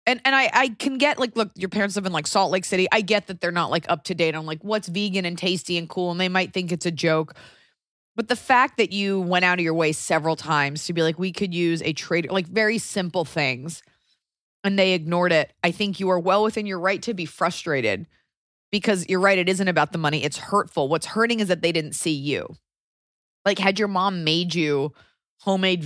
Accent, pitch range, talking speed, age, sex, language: American, 160-200 Hz, 240 wpm, 20-39, female, English